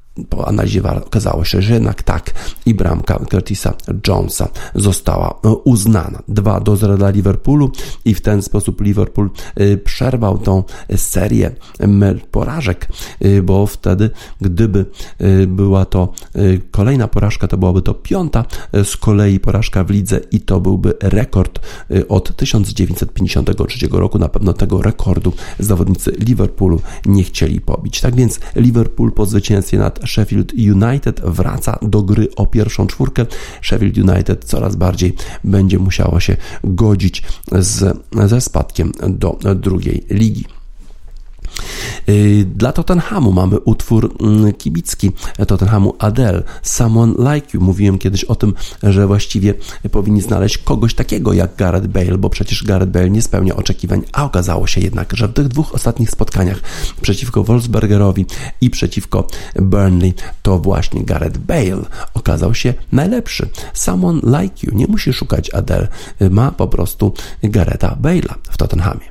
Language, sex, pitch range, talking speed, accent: Polish, male, 95-110 Hz, 130 wpm, native